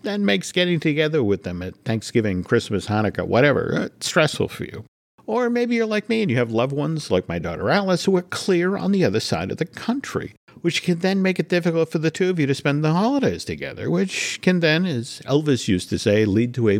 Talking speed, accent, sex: 230 wpm, American, male